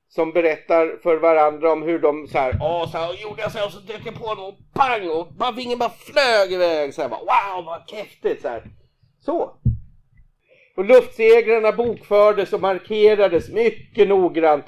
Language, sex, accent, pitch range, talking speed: Swedish, male, native, 155-245 Hz, 170 wpm